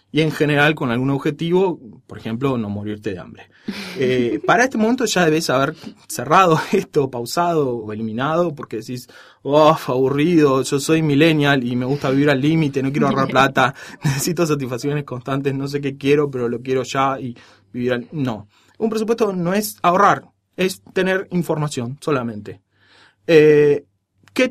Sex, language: male, Spanish